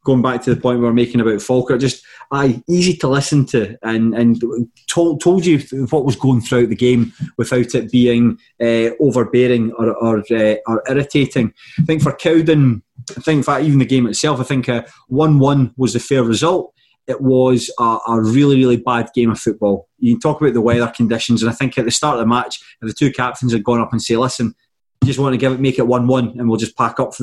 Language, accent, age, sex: English, British, 20-39, male